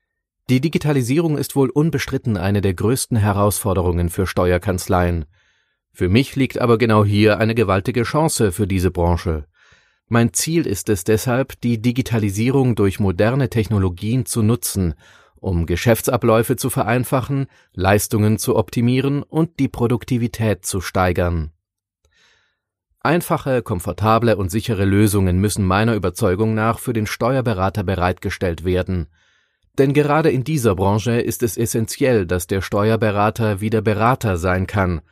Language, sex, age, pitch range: German, male, 30-49, 95-125 Hz